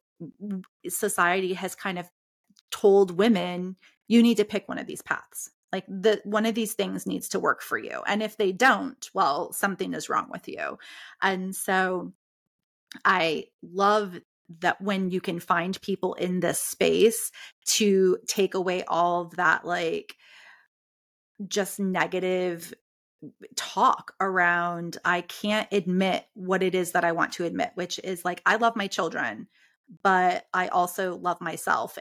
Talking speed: 155 wpm